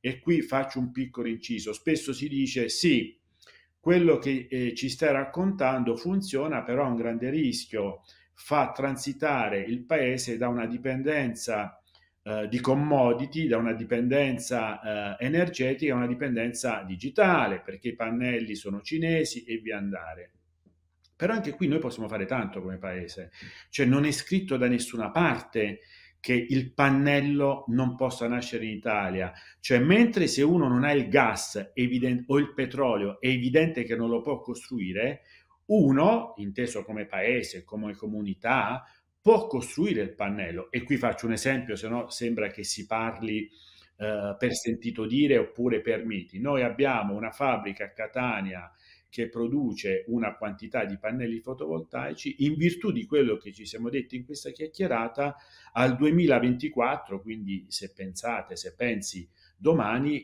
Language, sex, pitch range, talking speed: Italian, male, 105-135 Hz, 150 wpm